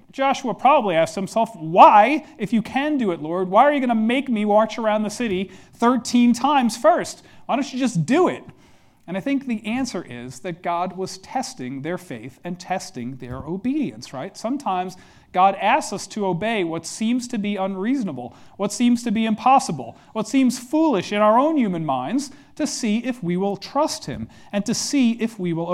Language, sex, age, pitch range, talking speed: English, male, 40-59, 175-240 Hz, 200 wpm